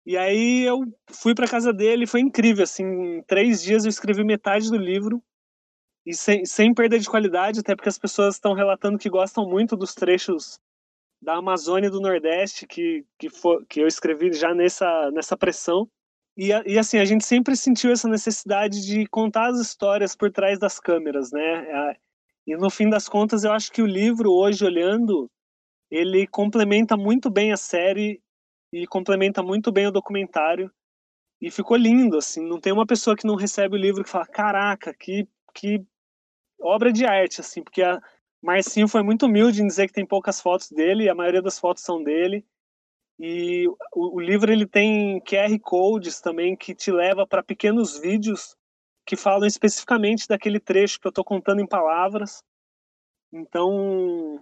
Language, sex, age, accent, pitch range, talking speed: Portuguese, male, 20-39, Brazilian, 185-215 Hz, 175 wpm